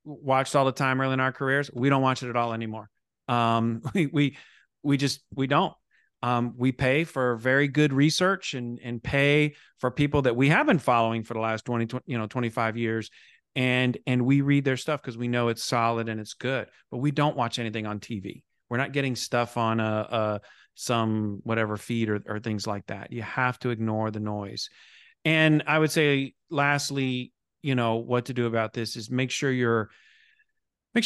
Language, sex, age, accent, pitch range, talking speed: English, male, 40-59, American, 115-135 Hz, 205 wpm